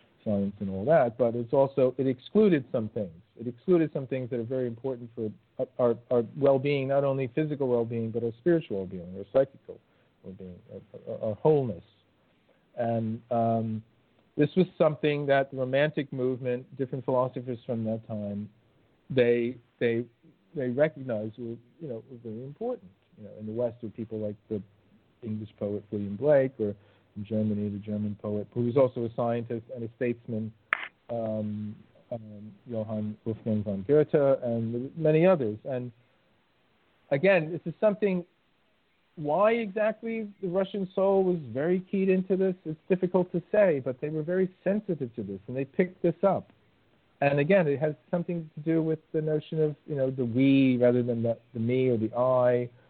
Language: English